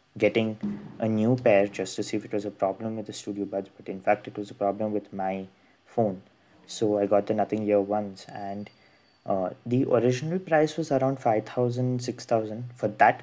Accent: Indian